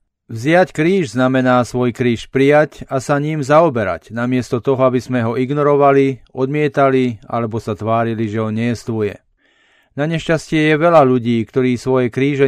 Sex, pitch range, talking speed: male, 115-140 Hz, 150 wpm